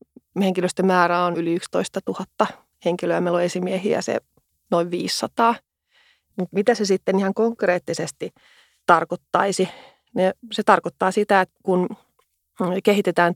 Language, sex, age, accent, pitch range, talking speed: Finnish, female, 30-49, native, 170-190 Hz, 110 wpm